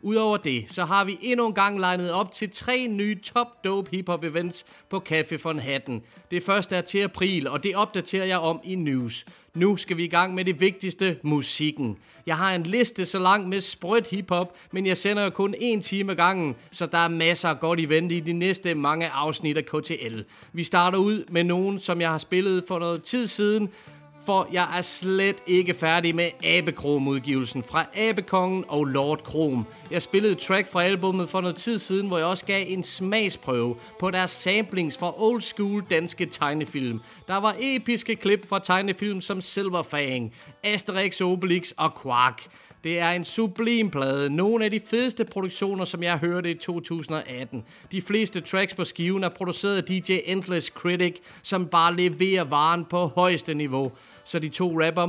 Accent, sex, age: native, male, 30-49